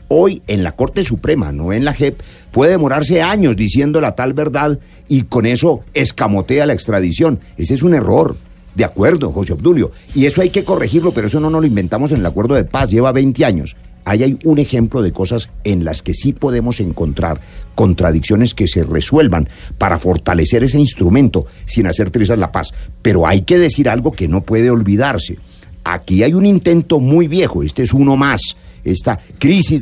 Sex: male